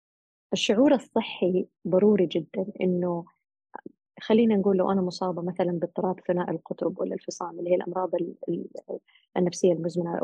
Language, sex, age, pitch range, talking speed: Arabic, female, 20-39, 170-205 Hz, 125 wpm